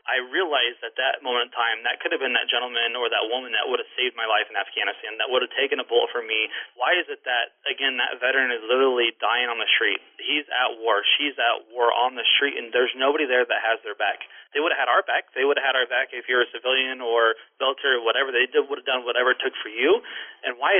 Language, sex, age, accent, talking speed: English, male, 30-49, American, 275 wpm